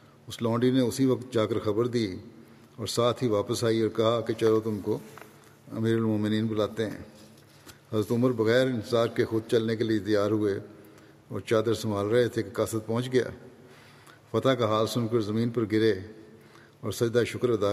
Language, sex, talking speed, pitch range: Urdu, male, 185 wpm, 110-125 Hz